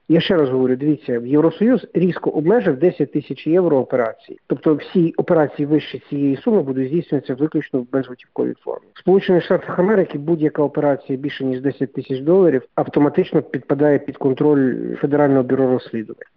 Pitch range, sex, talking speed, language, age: 130-160 Hz, male, 160 wpm, Ukrainian, 50-69